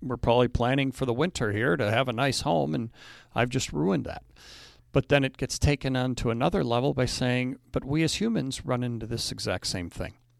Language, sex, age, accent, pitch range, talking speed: English, male, 50-69, American, 115-135 Hz, 220 wpm